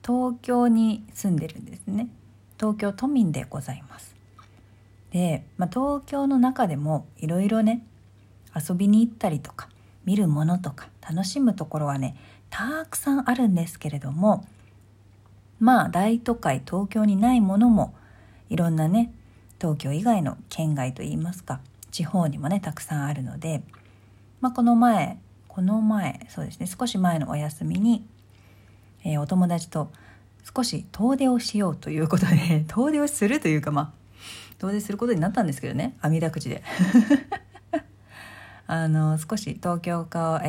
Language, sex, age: Japanese, female, 40-59